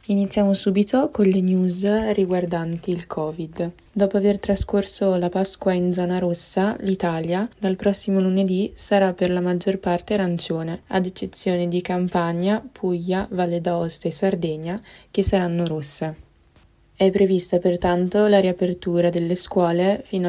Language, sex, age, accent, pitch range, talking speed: Italian, female, 20-39, native, 175-195 Hz, 135 wpm